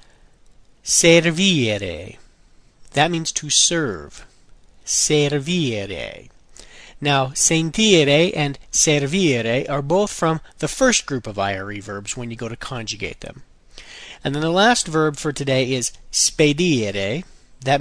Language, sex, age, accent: Italian, male, 40-59, American